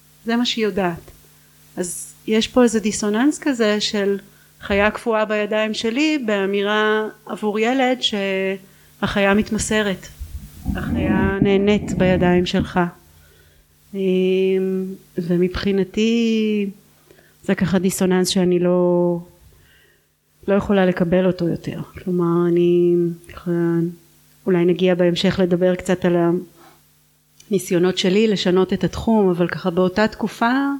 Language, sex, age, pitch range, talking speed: Hebrew, female, 30-49, 180-210 Hz, 105 wpm